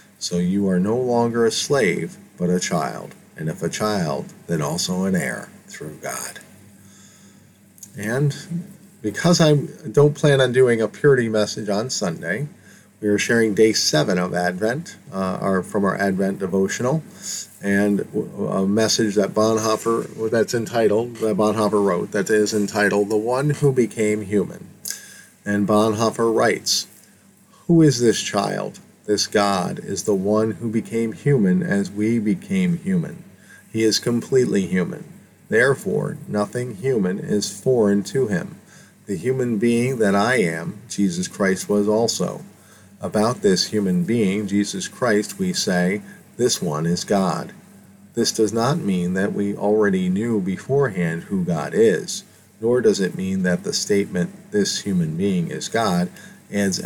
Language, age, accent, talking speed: English, 40-59, American, 150 wpm